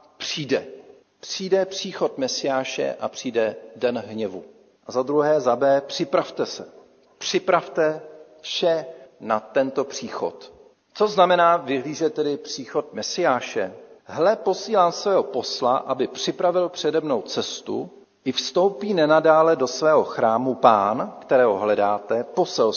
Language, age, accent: Czech, 50-69, native